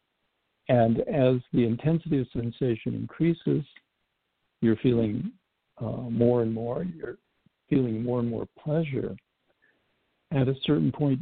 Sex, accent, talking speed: male, American, 125 wpm